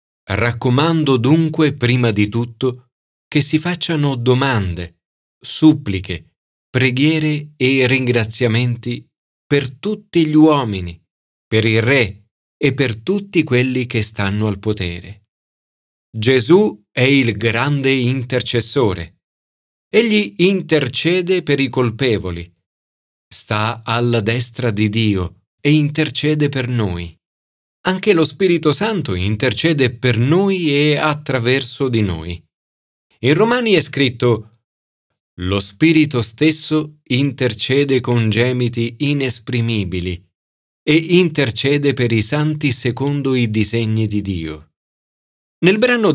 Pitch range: 105-150 Hz